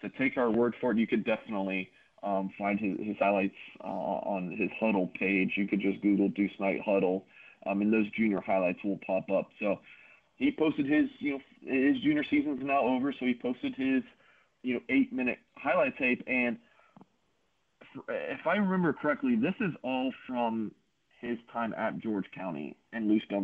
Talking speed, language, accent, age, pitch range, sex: 180 wpm, English, American, 30-49, 105-140 Hz, male